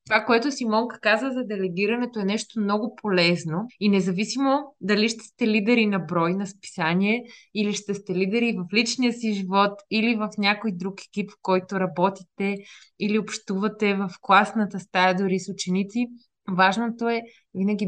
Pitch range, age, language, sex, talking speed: 170-210 Hz, 20-39, Bulgarian, female, 160 wpm